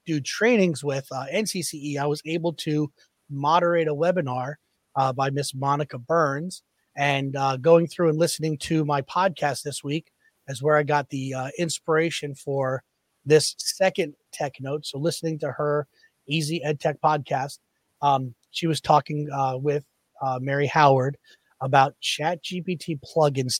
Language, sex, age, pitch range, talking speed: English, male, 30-49, 135-160 Hz, 155 wpm